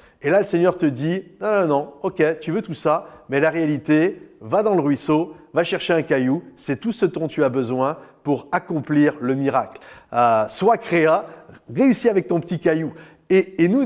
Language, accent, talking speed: French, French, 205 wpm